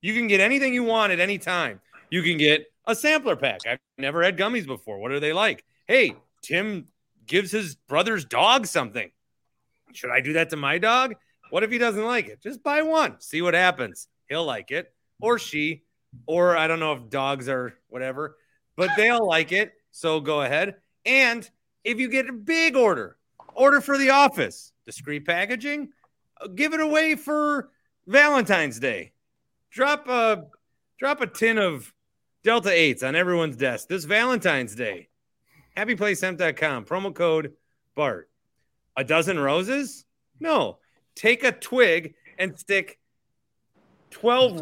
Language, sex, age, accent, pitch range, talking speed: English, male, 30-49, American, 160-250 Hz, 155 wpm